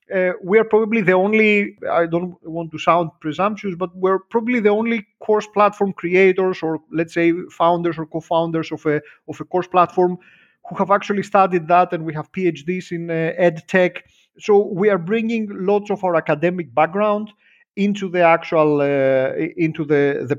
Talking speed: 175 wpm